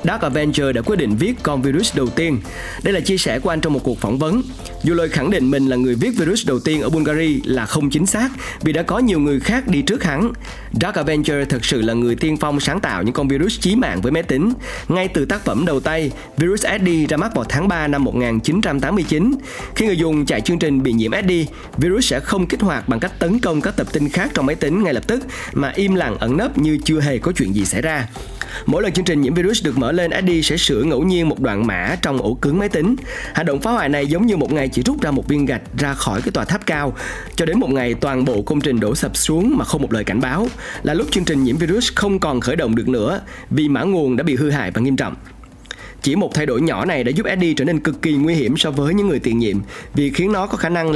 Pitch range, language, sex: 130-175 Hz, Vietnamese, male